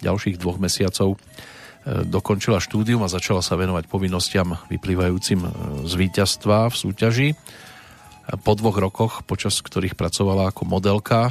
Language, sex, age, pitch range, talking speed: Slovak, male, 40-59, 95-115 Hz, 120 wpm